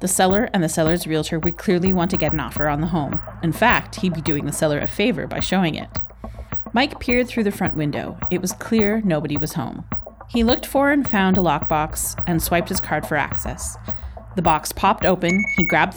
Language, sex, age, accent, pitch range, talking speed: English, female, 30-49, American, 150-185 Hz, 220 wpm